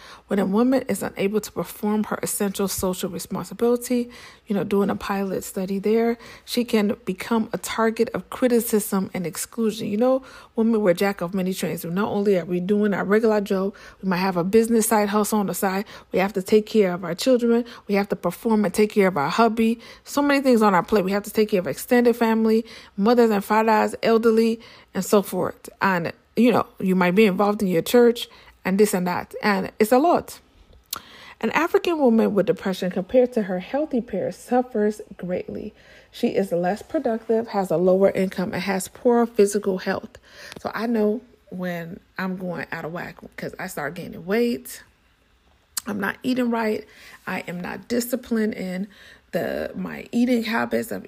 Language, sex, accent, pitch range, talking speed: English, female, American, 190-230 Hz, 190 wpm